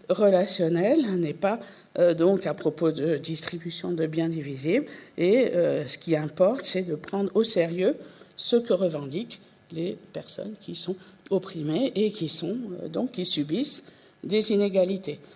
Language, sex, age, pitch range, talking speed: French, female, 50-69, 160-205 Hz, 150 wpm